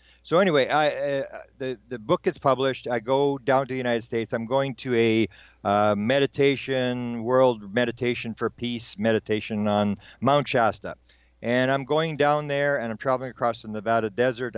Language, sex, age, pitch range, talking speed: English, male, 50-69, 110-130 Hz, 175 wpm